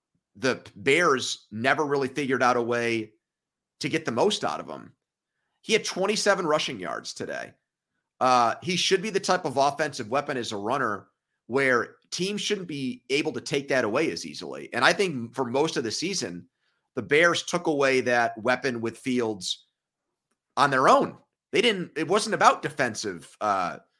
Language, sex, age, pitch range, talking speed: English, male, 30-49, 120-155 Hz, 175 wpm